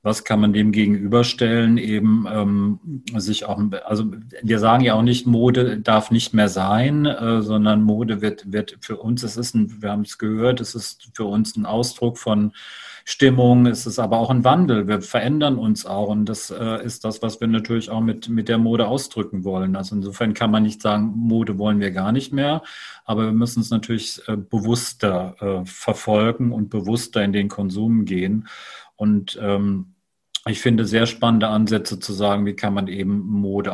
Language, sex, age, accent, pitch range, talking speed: German, male, 40-59, German, 100-115 Hz, 190 wpm